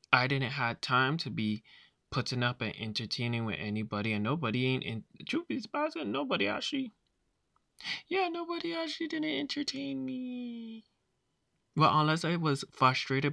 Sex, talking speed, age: male, 130 wpm, 20-39